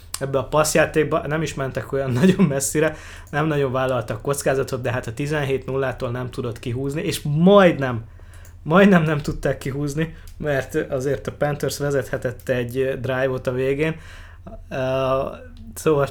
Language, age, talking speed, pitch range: English, 20-39, 140 wpm, 120-145 Hz